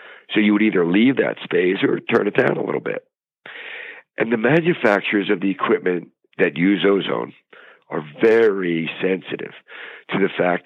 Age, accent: 60-79, American